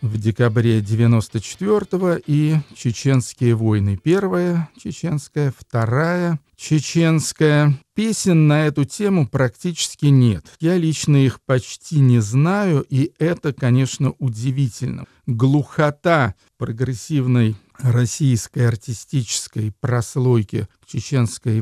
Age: 50-69